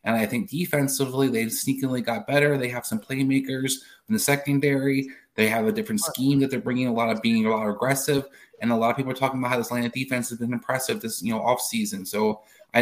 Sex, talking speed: male, 250 wpm